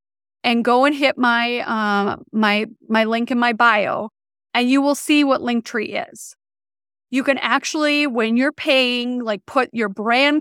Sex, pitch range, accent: female, 230-300 Hz, American